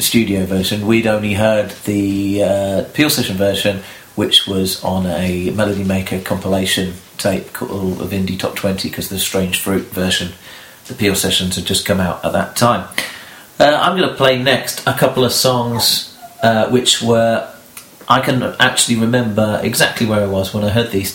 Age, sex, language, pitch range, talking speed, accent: 40-59, male, English, 95-115 Hz, 180 wpm, British